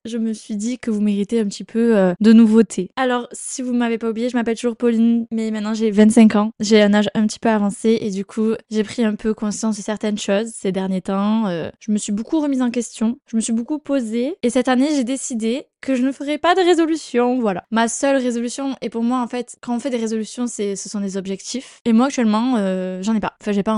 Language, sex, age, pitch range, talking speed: French, female, 20-39, 205-245 Hz, 260 wpm